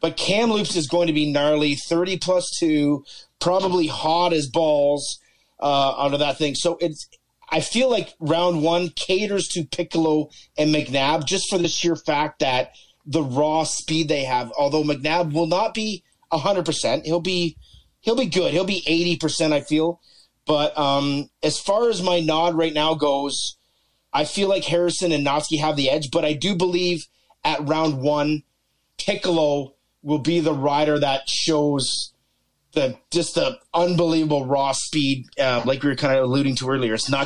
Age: 30-49